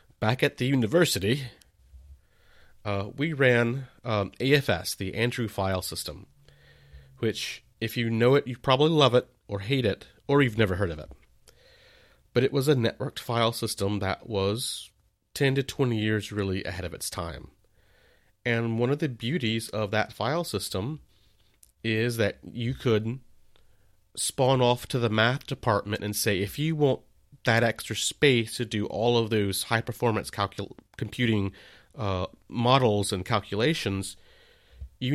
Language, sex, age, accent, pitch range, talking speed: English, male, 30-49, American, 100-125 Hz, 150 wpm